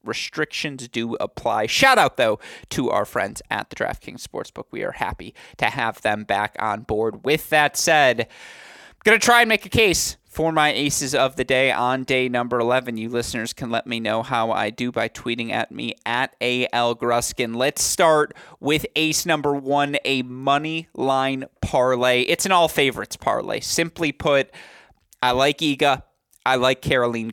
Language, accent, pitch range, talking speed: English, American, 115-145 Hz, 175 wpm